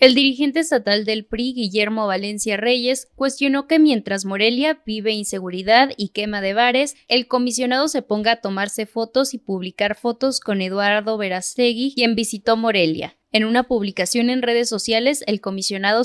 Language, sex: Spanish, female